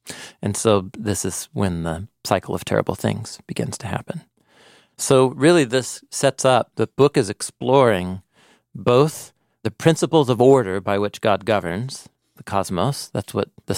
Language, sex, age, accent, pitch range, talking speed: English, male, 40-59, American, 100-125 Hz, 155 wpm